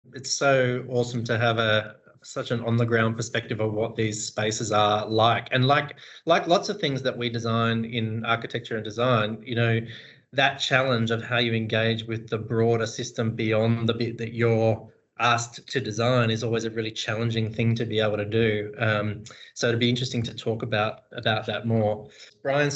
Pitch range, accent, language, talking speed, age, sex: 115-130 Hz, Australian, English, 200 wpm, 20-39, male